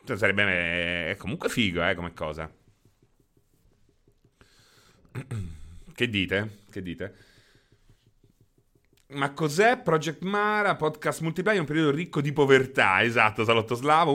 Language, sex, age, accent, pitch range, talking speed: Italian, male, 30-49, native, 120-160 Hz, 110 wpm